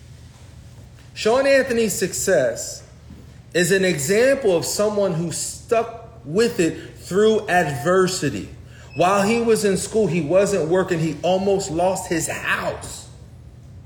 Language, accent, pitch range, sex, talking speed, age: English, American, 130-210 Hz, male, 115 wpm, 40-59